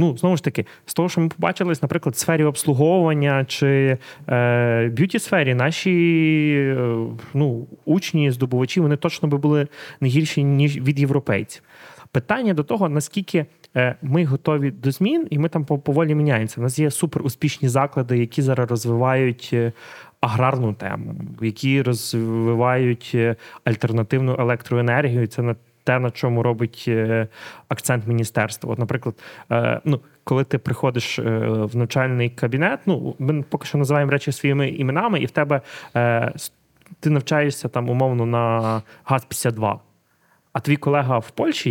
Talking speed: 140 wpm